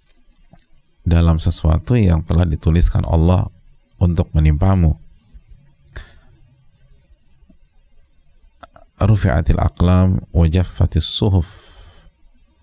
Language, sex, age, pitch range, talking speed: Indonesian, male, 40-59, 80-95 Hz, 50 wpm